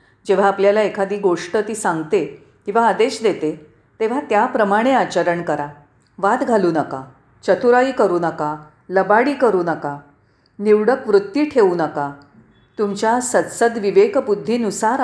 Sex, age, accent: female, 40-59, native